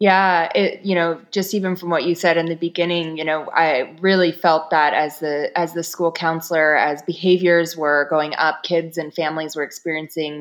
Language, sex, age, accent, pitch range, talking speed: English, female, 20-39, American, 155-180 Hz, 200 wpm